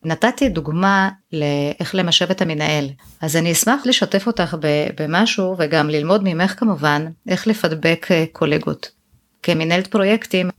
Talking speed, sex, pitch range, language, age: 120 wpm, female, 165-215 Hz, Hebrew, 30-49